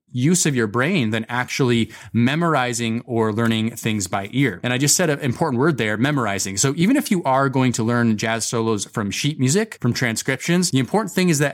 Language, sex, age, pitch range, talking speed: English, male, 30-49, 115-145 Hz, 215 wpm